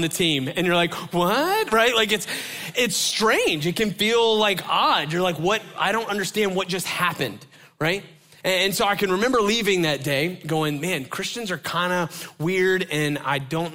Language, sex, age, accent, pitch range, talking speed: English, male, 20-39, American, 145-180 Hz, 190 wpm